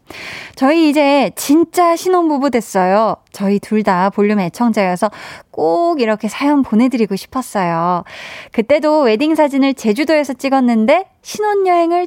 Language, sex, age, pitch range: Korean, female, 20-39, 215-310 Hz